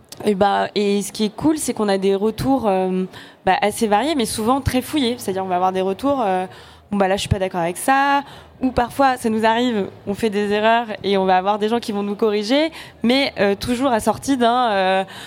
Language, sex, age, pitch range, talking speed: French, female, 20-39, 190-235 Hz, 250 wpm